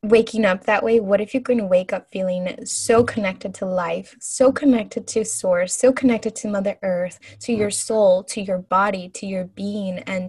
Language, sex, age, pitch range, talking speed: English, female, 10-29, 190-235 Hz, 205 wpm